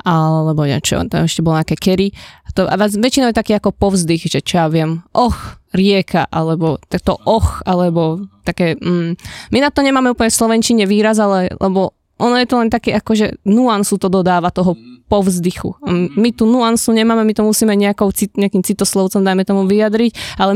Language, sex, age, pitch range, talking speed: Slovak, female, 20-39, 175-210 Hz, 180 wpm